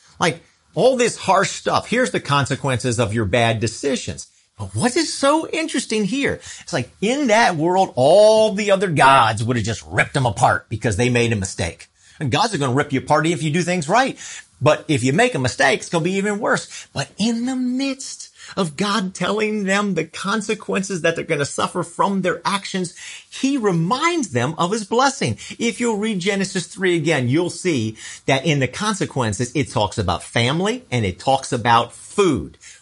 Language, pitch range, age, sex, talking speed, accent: English, 120-195 Hz, 40-59, male, 195 wpm, American